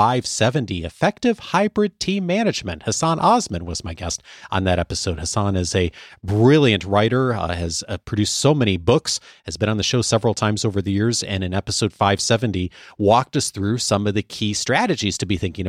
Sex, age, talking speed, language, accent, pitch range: male, 30-49, 190 wpm, English, American, 95-130 Hz